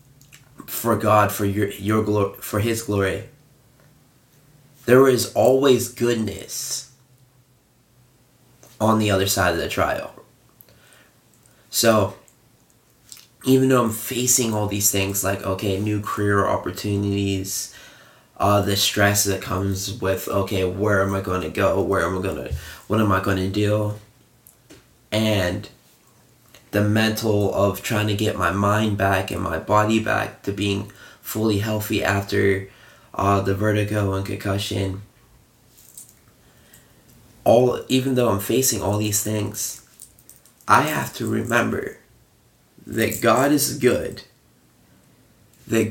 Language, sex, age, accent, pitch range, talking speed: English, male, 20-39, American, 100-125 Hz, 125 wpm